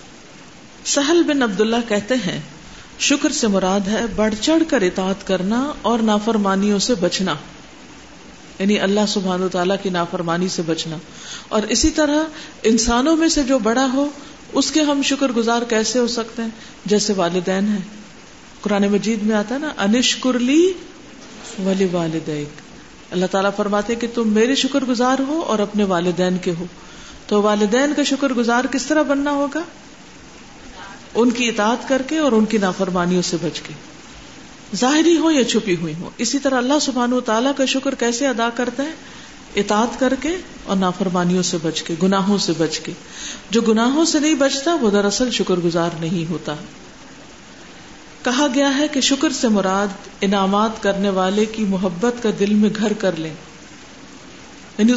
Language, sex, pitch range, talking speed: Urdu, female, 190-265 Hz, 165 wpm